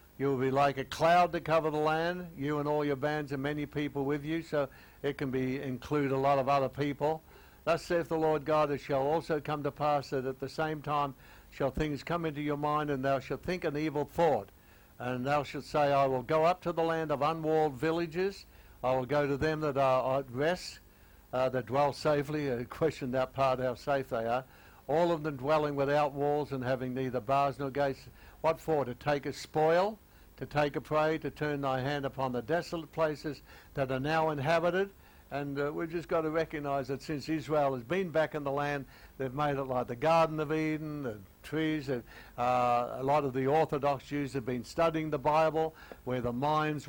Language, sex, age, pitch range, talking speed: English, male, 60-79, 130-155 Hz, 215 wpm